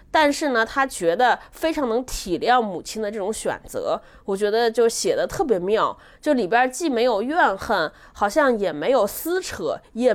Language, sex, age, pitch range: Chinese, female, 20-39, 225-295 Hz